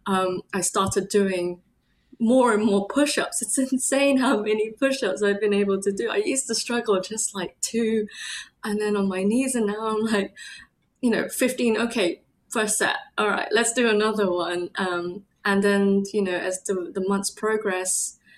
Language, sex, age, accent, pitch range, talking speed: English, female, 20-39, British, 190-235 Hz, 185 wpm